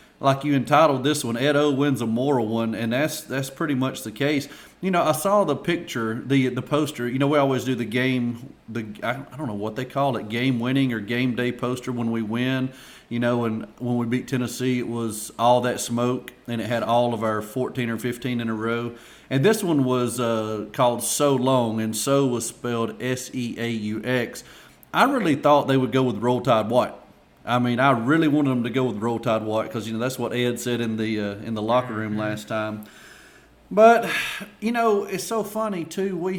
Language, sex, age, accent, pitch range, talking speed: English, male, 40-59, American, 120-150 Hz, 230 wpm